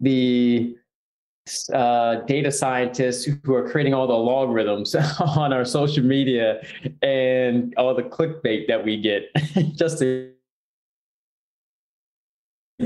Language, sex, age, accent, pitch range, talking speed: English, male, 20-39, American, 120-155 Hz, 105 wpm